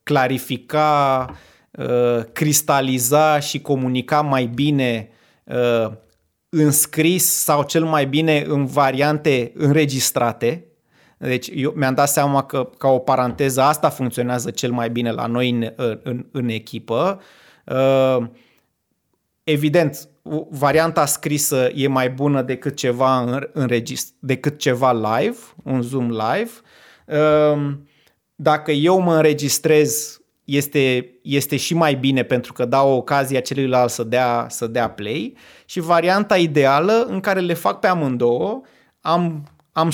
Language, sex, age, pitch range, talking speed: Romanian, male, 30-49, 125-155 Hz, 130 wpm